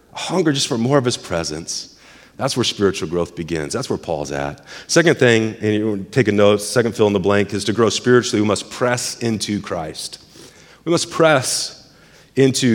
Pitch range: 120-155 Hz